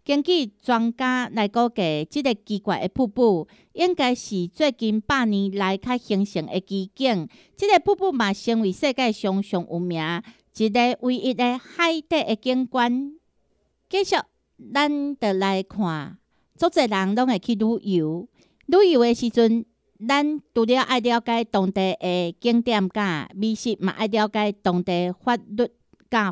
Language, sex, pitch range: Chinese, female, 195-255 Hz